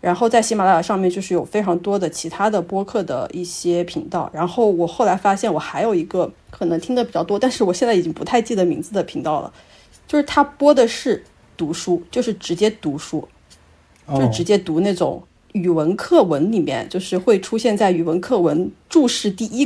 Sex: female